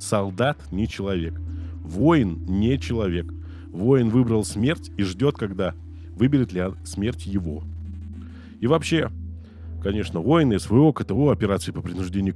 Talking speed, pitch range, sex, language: 125 wpm, 85-115 Hz, male, Russian